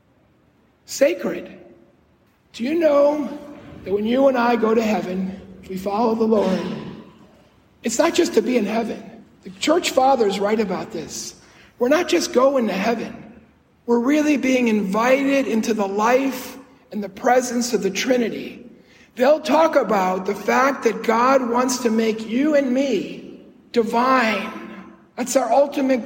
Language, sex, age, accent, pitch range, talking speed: English, male, 50-69, American, 215-265 Hz, 150 wpm